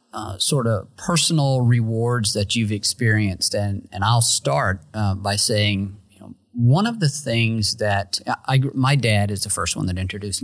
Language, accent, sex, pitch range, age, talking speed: English, American, male, 100-115 Hz, 40-59, 185 wpm